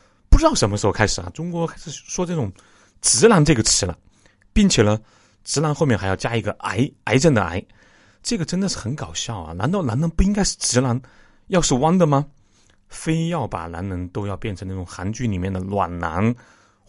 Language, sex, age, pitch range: Chinese, male, 30-49, 100-130 Hz